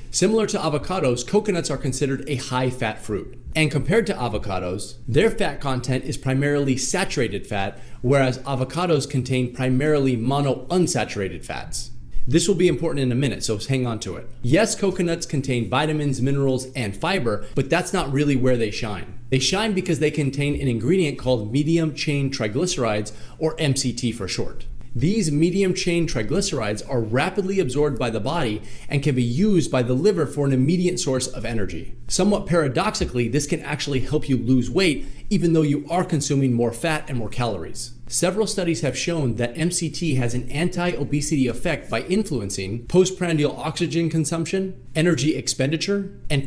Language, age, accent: English, 30-49, American